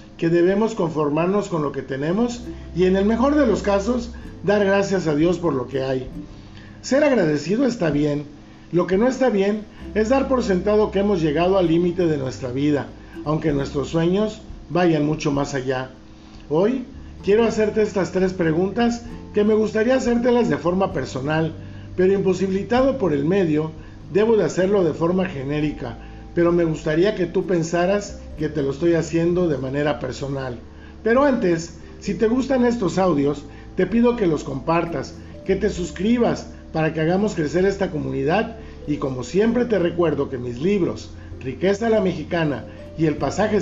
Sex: male